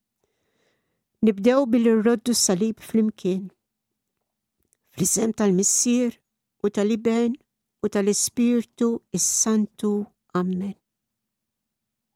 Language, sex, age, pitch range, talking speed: English, female, 60-79, 205-235 Hz, 65 wpm